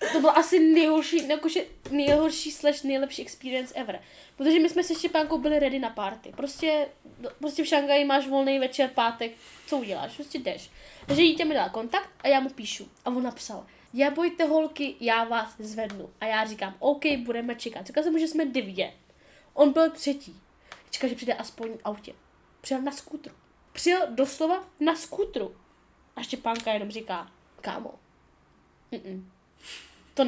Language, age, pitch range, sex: Czech, 10-29, 230-315 Hz, female